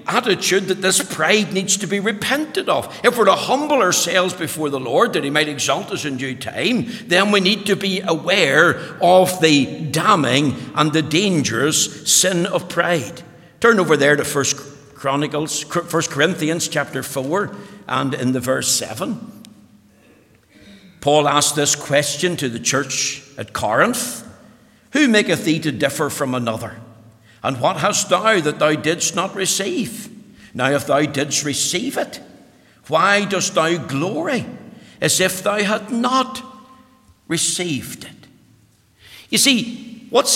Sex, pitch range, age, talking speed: male, 140-195 Hz, 60-79, 145 wpm